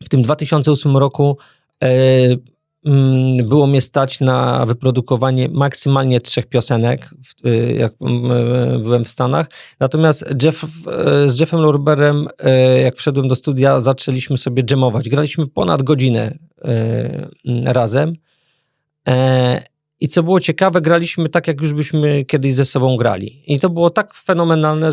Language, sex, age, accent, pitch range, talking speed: Polish, male, 40-59, native, 130-165 Hz, 140 wpm